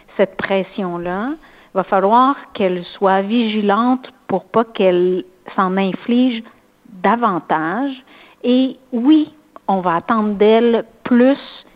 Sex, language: female, French